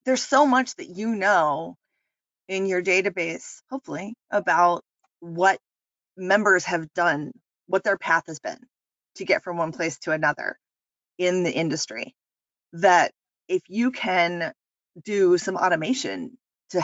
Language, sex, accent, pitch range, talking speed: English, female, American, 170-250 Hz, 135 wpm